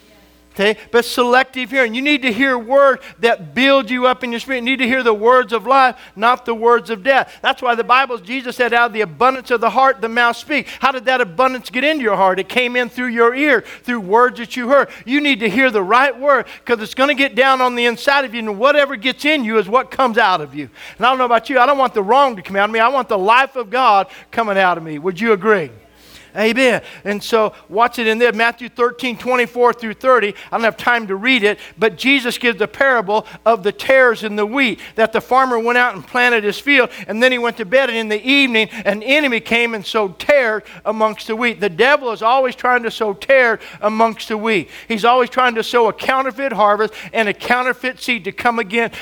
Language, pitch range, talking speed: English, 220-255 Hz, 250 wpm